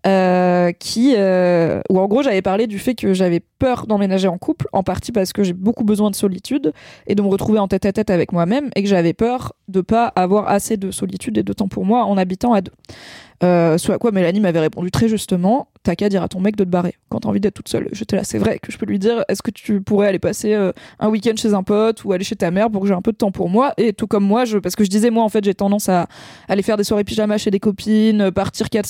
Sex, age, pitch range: female, 20-39, 190-220 Hz